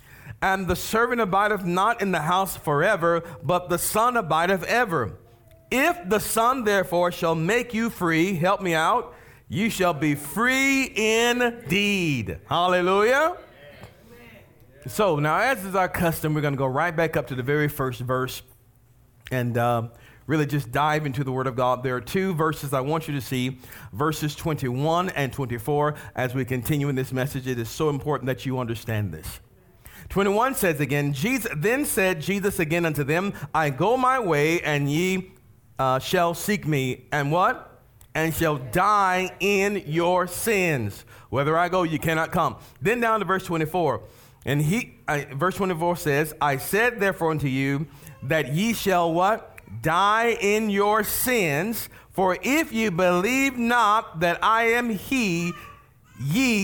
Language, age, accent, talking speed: English, 40-59, American, 165 wpm